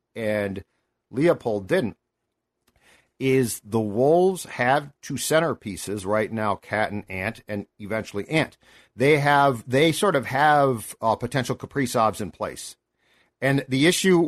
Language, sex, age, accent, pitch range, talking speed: English, male, 50-69, American, 120-150 Hz, 130 wpm